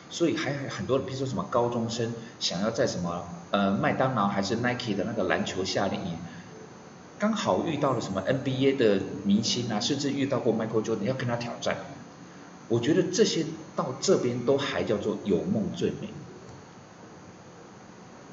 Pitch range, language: 110-155 Hz, Chinese